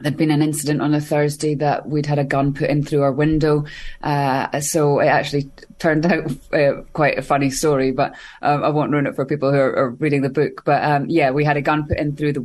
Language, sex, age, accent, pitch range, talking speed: English, female, 20-39, British, 145-160 Hz, 255 wpm